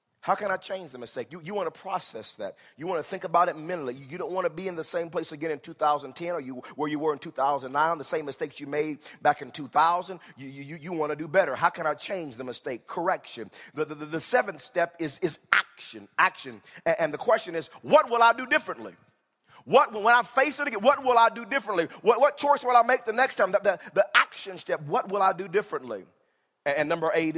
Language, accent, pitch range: English, American, 155-240 Hz